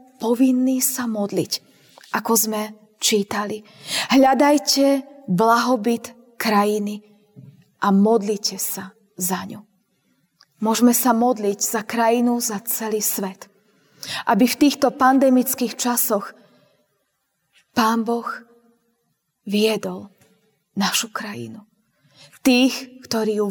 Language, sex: Slovak, female